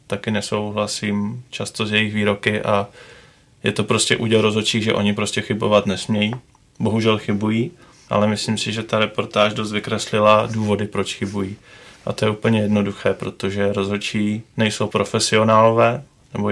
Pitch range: 100-110 Hz